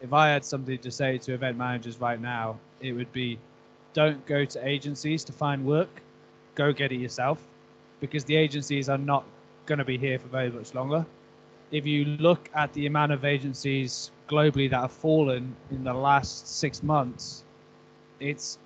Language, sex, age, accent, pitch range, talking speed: English, male, 20-39, British, 130-155 Hz, 180 wpm